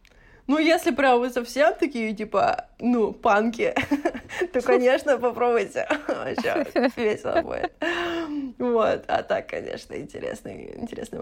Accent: native